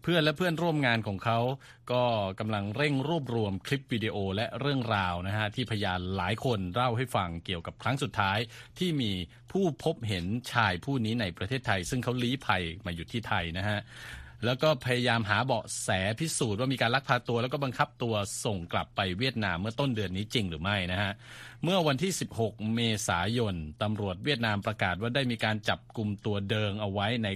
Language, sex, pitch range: Thai, male, 100-125 Hz